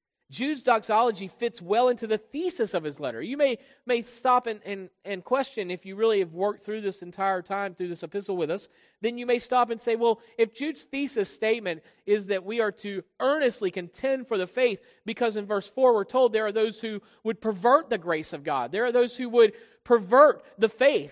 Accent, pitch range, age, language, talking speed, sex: American, 200-245 Hz, 40-59, English, 220 wpm, male